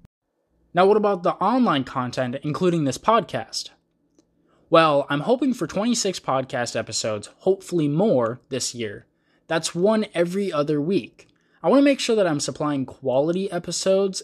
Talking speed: 145 wpm